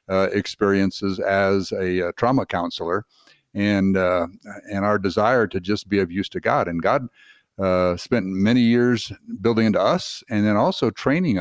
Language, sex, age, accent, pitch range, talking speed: English, male, 60-79, American, 95-110 Hz, 170 wpm